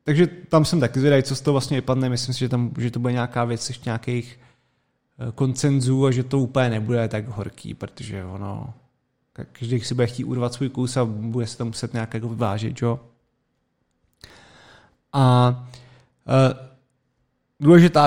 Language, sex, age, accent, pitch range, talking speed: Czech, male, 30-49, native, 120-140 Hz, 165 wpm